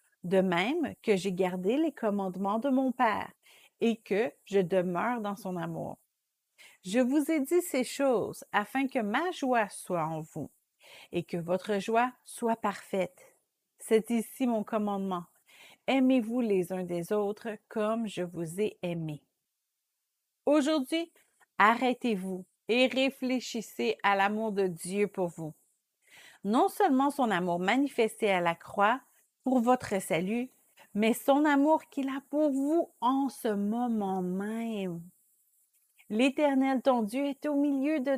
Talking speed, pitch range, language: 140 wpm, 195-260 Hz, English